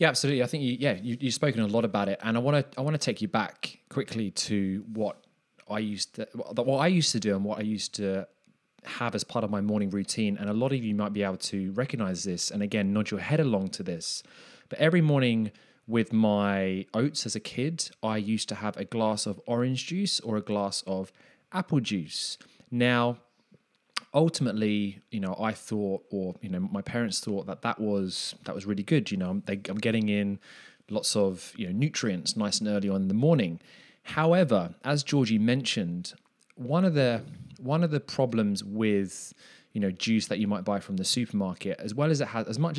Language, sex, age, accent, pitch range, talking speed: English, male, 20-39, British, 100-140 Hz, 215 wpm